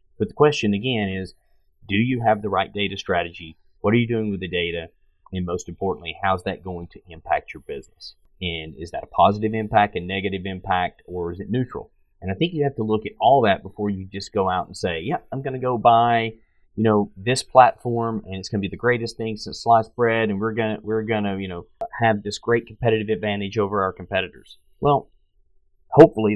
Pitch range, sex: 95-115 Hz, male